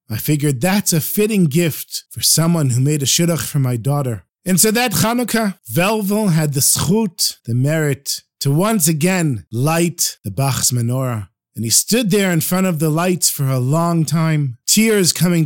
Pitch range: 135-190 Hz